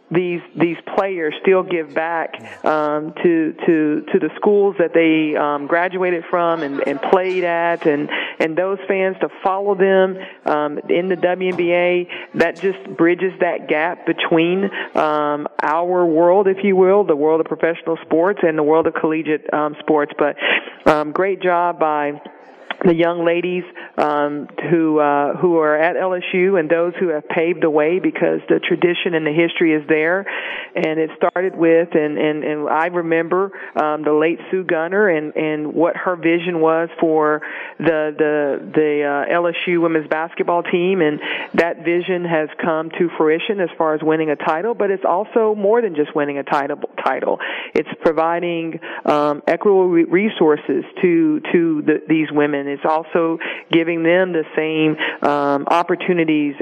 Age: 40-59